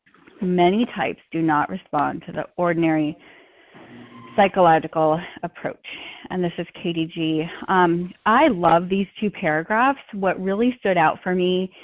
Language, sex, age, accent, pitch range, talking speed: English, female, 30-49, American, 175-230 Hz, 135 wpm